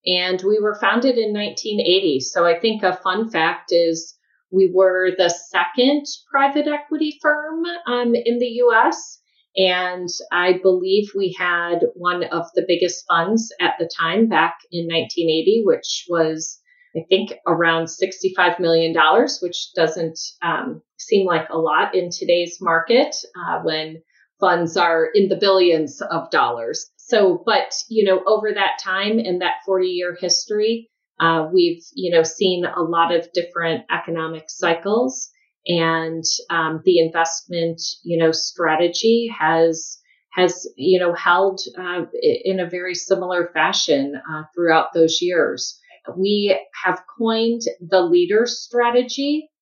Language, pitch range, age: English, 170-225 Hz, 30-49